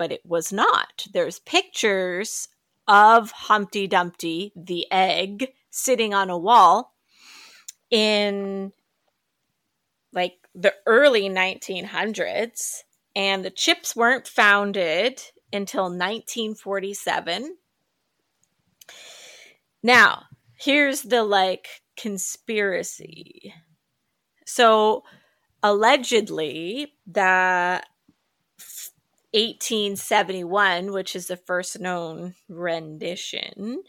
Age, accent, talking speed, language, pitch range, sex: 20-39, American, 75 wpm, English, 180-220 Hz, female